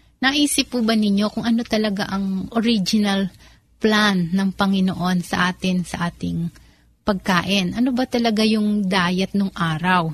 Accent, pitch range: native, 190-225 Hz